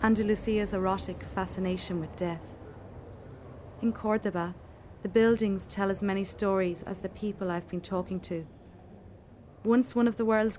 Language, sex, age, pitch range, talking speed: English, female, 30-49, 130-200 Hz, 140 wpm